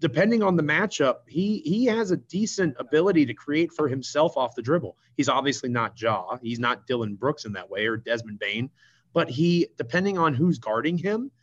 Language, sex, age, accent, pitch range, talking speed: English, male, 30-49, American, 120-160 Hz, 200 wpm